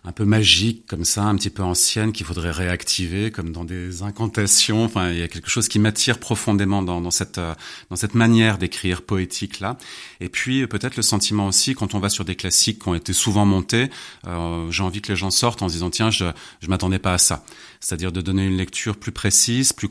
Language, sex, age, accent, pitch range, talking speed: French, male, 30-49, French, 90-110 Hz, 230 wpm